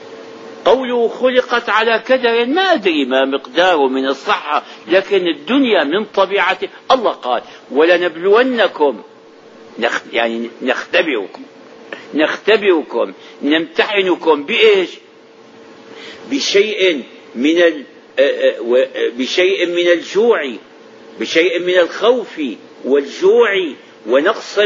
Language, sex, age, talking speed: Arabic, male, 60-79, 80 wpm